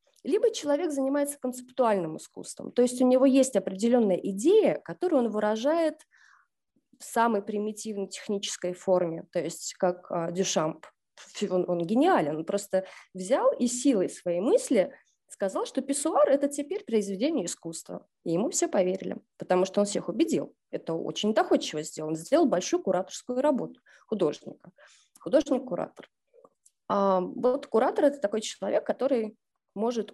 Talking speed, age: 135 wpm, 20-39